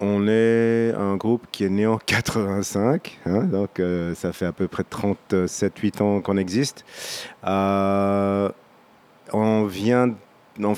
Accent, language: French, French